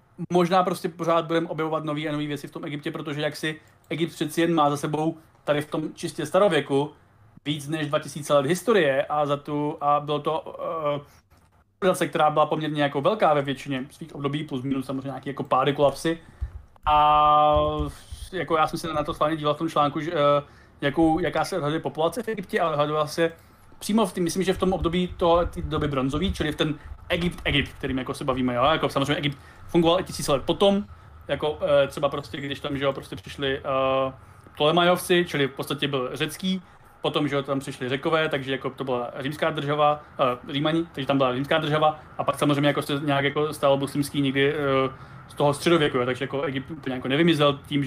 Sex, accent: male, native